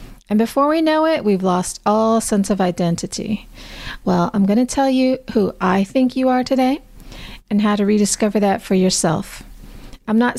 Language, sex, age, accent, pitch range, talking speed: English, female, 40-59, American, 190-240 Hz, 185 wpm